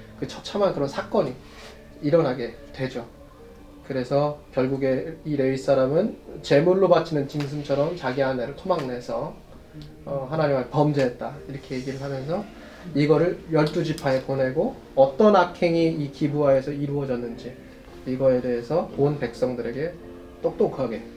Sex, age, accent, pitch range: male, 20-39, native, 130-170 Hz